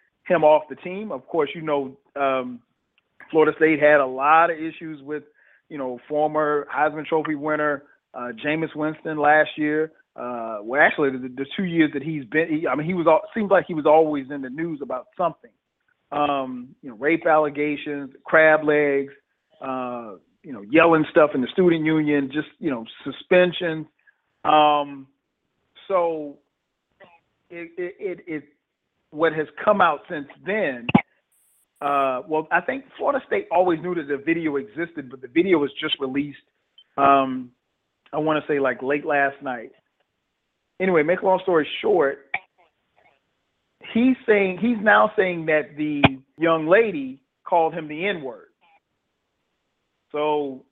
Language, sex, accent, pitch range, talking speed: English, male, American, 140-170 Hz, 150 wpm